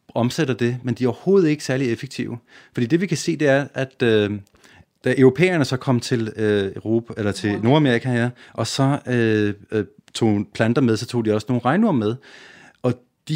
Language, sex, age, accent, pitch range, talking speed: Danish, male, 30-49, native, 115-145 Hz, 200 wpm